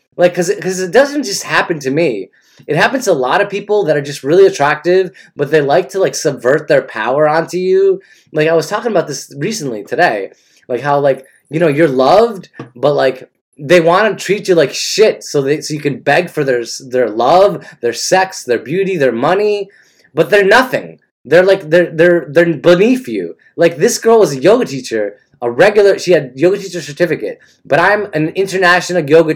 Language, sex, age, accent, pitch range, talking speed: English, male, 20-39, American, 150-195 Hz, 205 wpm